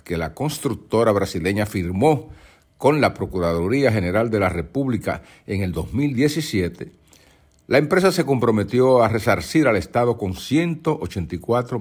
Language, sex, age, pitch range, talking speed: Spanish, male, 50-69, 90-135 Hz, 125 wpm